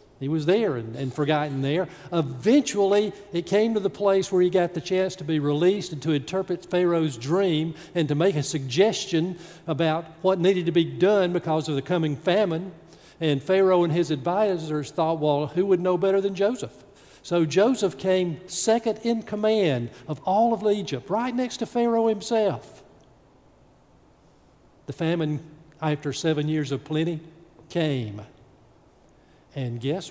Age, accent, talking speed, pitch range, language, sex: 50-69, American, 160 wpm, 150-185 Hz, English, male